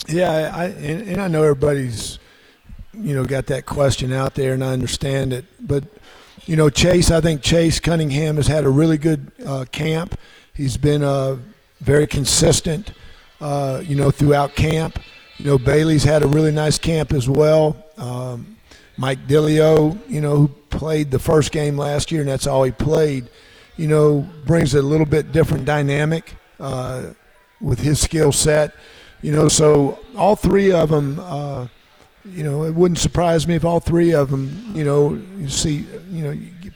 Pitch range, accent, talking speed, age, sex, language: 135-155 Hz, American, 180 wpm, 50-69, male, English